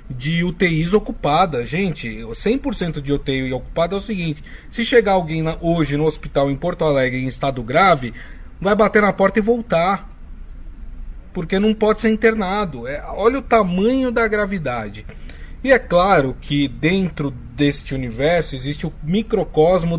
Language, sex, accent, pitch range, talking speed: Portuguese, male, Brazilian, 125-185 Hz, 145 wpm